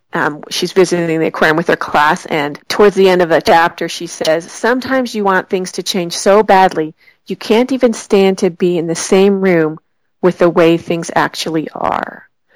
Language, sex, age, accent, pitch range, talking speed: English, female, 40-59, American, 170-210 Hz, 195 wpm